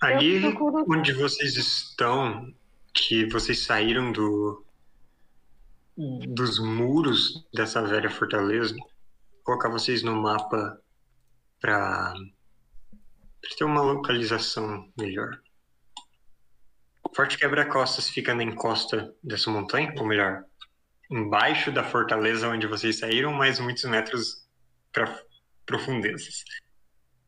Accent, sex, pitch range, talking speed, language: Brazilian, male, 95-130 Hz, 95 wpm, Portuguese